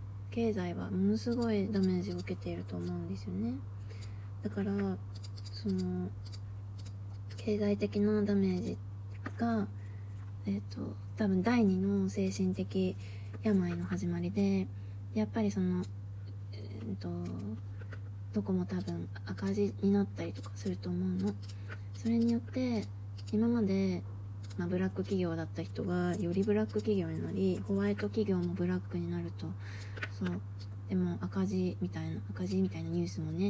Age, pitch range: 20-39, 95-100 Hz